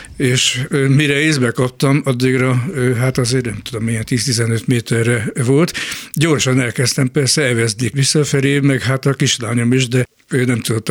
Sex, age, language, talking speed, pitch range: male, 60-79, Hungarian, 150 wpm, 115-135 Hz